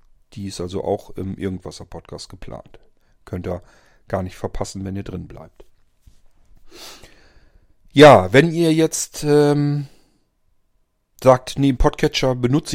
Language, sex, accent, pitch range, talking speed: German, male, German, 95-125 Hz, 120 wpm